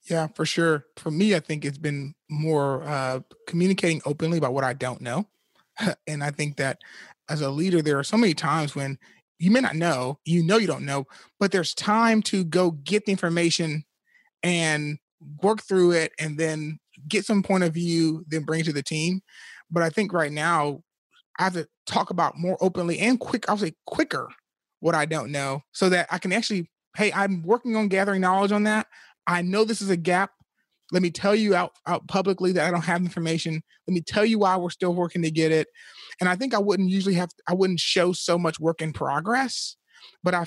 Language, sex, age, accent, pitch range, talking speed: English, male, 30-49, American, 160-195 Hz, 215 wpm